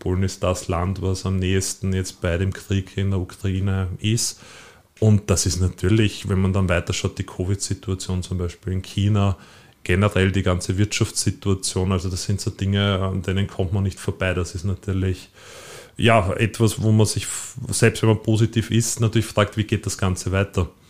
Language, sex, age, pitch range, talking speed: German, male, 30-49, 95-110 Hz, 185 wpm